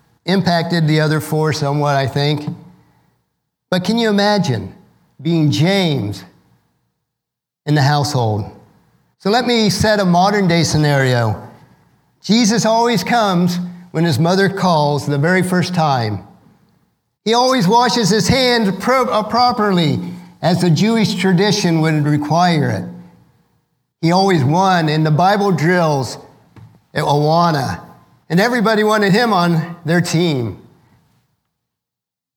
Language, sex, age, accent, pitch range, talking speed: English, male, 50-69, American, 150-200 Hz, 115 wpm